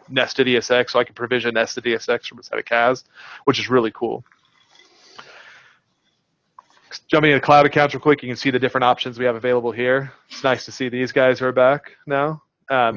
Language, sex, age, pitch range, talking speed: English, male, 30-49, 120-135 Hz, 200 wpm